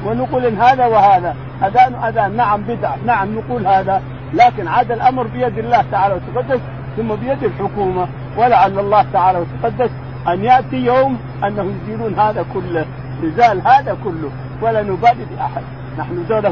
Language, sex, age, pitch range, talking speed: Arabic, male, 50-69, 130-215 Hz, 140 wpm